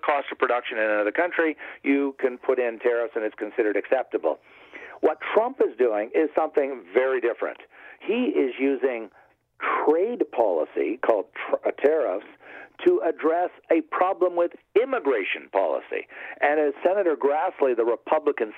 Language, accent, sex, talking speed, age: English, American, male, 140 wpm, 50-69